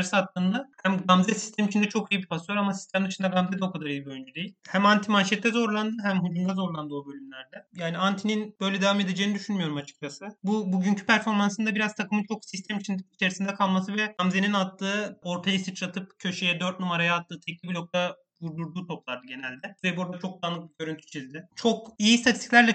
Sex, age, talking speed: male, 30-49, 180 wpm